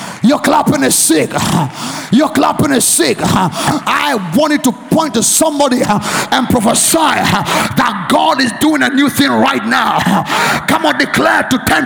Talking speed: 150 wpm